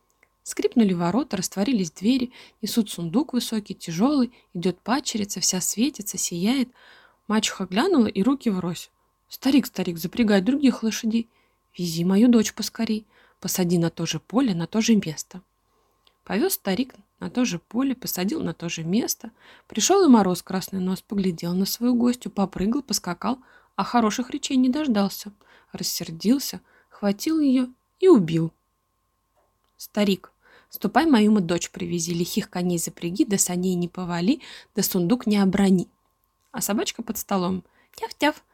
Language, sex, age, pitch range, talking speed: Russian, female, 20-39, 180-245 Hz, 140 wpm